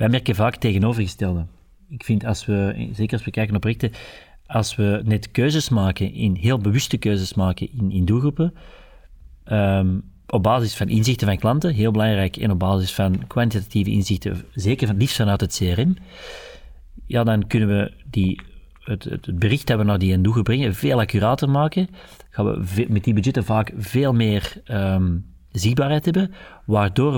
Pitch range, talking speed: 100-120 Hz, 175 wpm